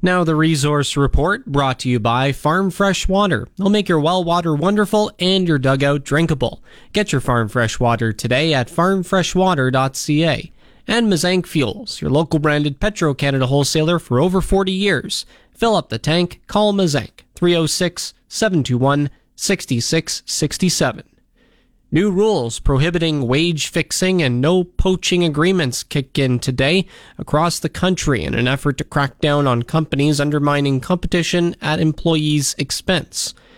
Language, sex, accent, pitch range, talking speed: English, male, American, 135-175 Hz, 130 wpm